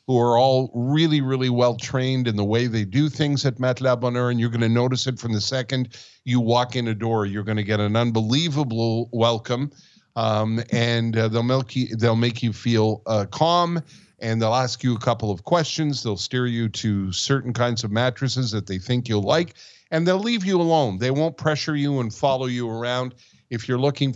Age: 50-69